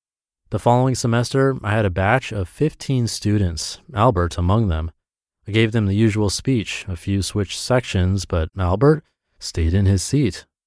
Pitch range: 95-125 Hz